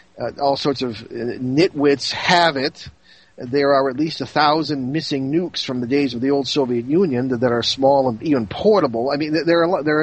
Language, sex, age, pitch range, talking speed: English, male, 50-69, 120-155 Hz, 225 wpm